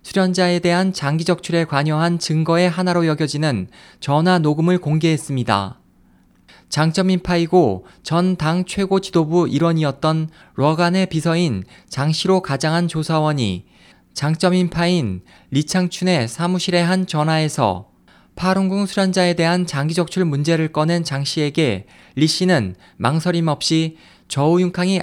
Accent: native